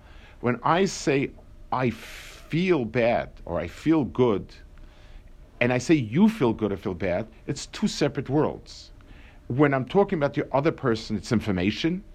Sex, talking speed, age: male, 160 wpm, 50-69